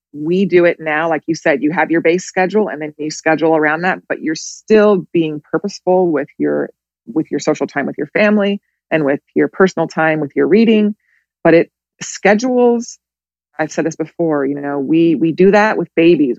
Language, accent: English, American